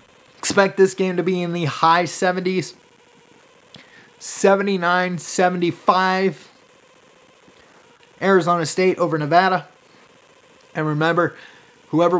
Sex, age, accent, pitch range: male, 30-49, American, 150-195 Hz